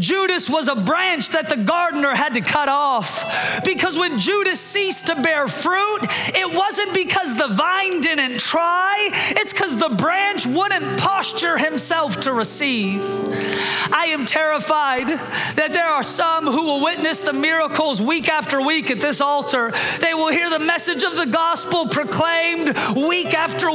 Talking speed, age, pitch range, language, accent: 160 wpm, 30-49, 285-355 Hz, English, American